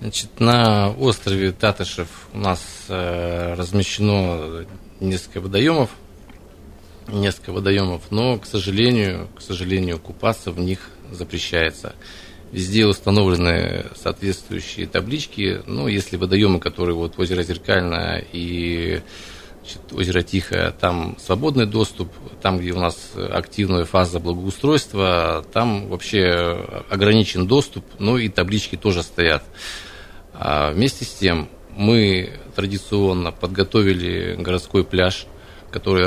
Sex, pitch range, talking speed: male, 90-105 Hz, 100 wpm